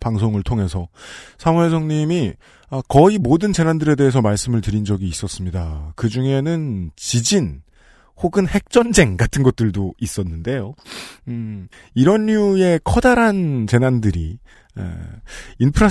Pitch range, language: 105-165 Hz, Korean